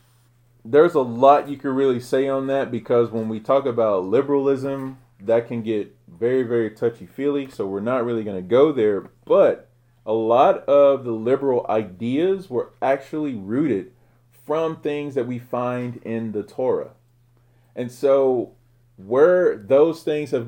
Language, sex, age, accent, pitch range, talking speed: English, male, 30-49, American, 110-135 Hz, 155 wpm